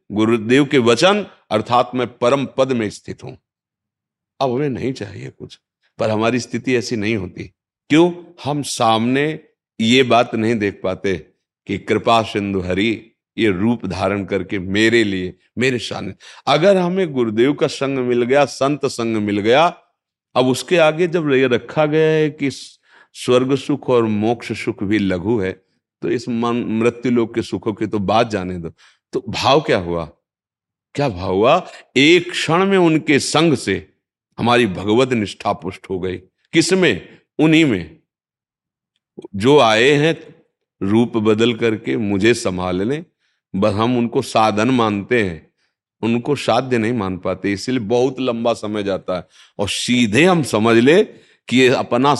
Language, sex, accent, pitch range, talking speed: Hindi, male, native, 105-135 Hz, 155 wpm